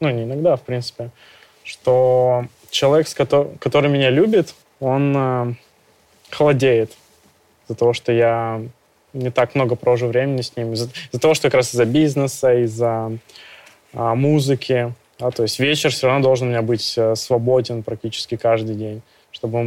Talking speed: 150 wpm